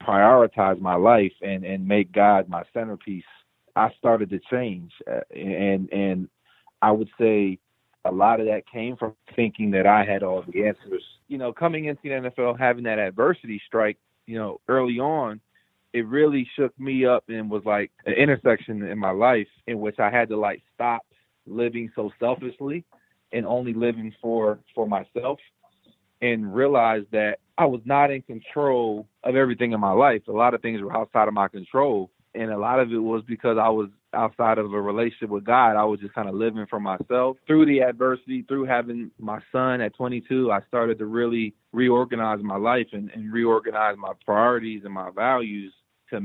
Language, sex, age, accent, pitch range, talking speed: English, male, 40-59, American, 105-120 Hz, 185 wpm